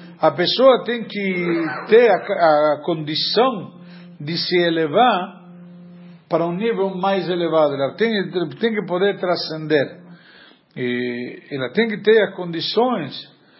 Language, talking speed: Portuguese, 130 wpm